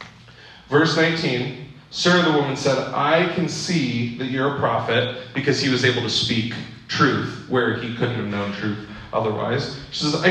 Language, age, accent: English, 30-49, American